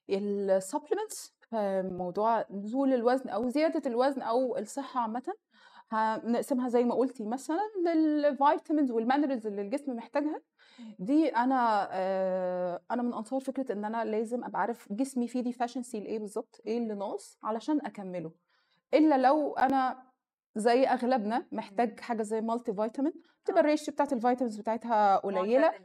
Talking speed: 135 wpm